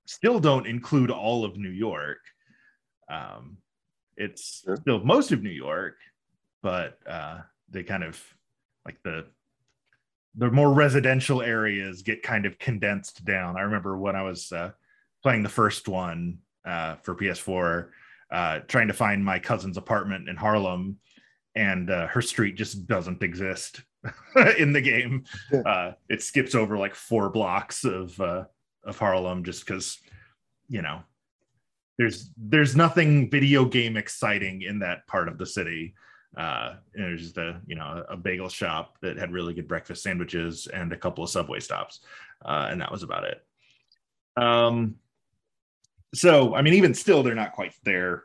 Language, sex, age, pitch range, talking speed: English, male, 30-49, 95-130 Hz, 160 wpm